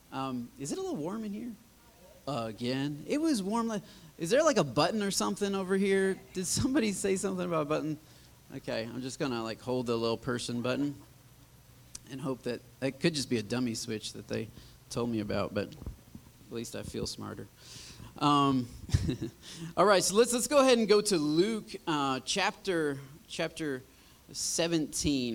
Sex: male